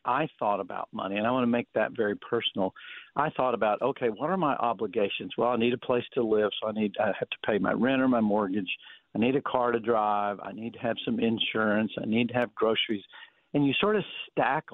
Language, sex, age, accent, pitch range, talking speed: English, male, 50-69, American, 120-165 Hz, 250 wpm